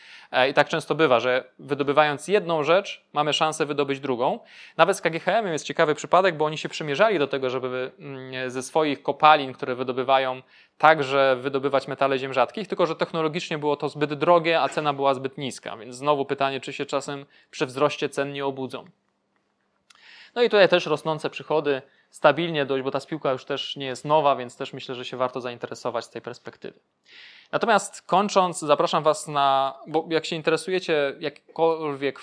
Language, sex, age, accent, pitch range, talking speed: Polish, male, 20-39, native, 135-160 Hz, 175 wpm